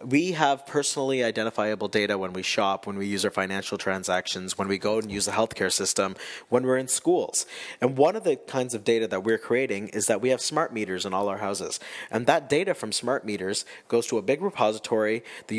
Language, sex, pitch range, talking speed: English, male, 105-130 Hz, 225 wpm